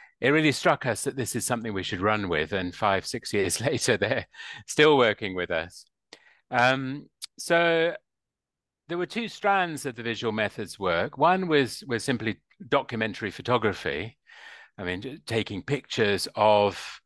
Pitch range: 105-140 Hz